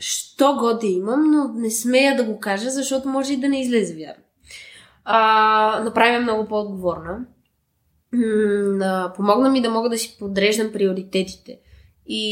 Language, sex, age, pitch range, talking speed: Bulgarian, female, 20-39, 200-245 Hz, 150 wpm